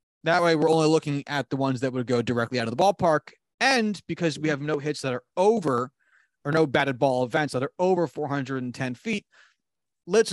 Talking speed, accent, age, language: 210 wpm, American, 30-49, English